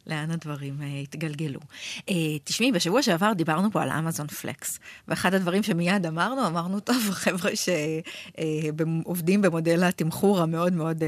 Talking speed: 125 wpm